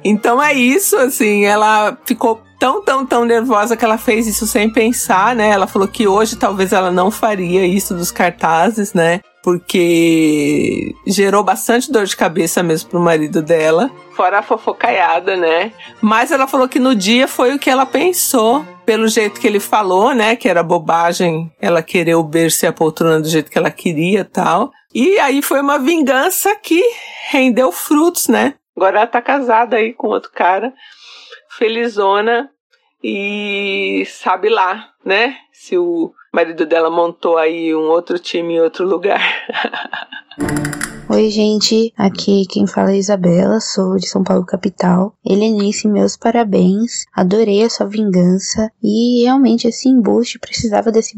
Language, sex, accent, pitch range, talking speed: Portuguese, female, Brazilian, 190-240 Hz, 160 wpm